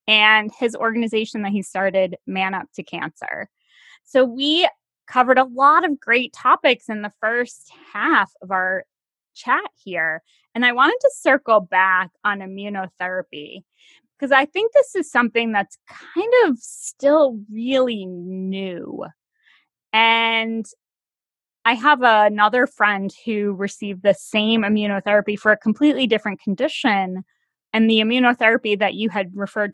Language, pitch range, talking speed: English, 200-265 Hz, 135 wpm